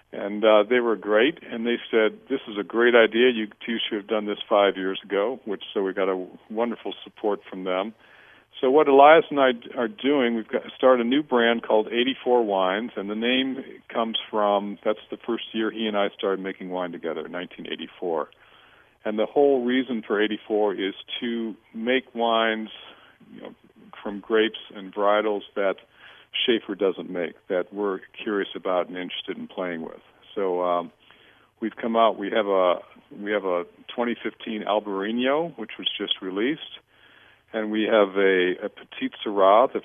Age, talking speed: 50-69, 180 wpm